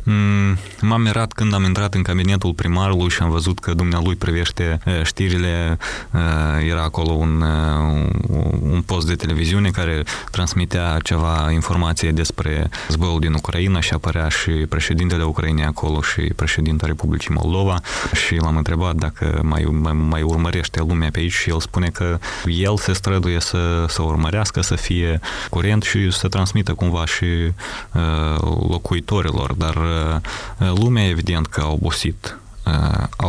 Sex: male